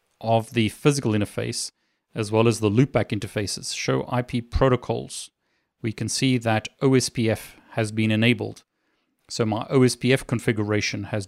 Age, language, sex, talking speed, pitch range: 40-59, English, male, 140 wpm, 110-130 Hz